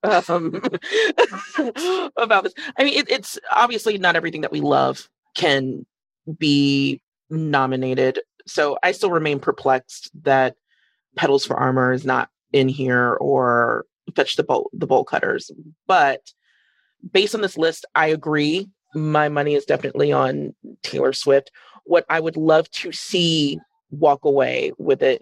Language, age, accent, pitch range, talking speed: English, 30-49, American, 140-215 Hz, 145 wpm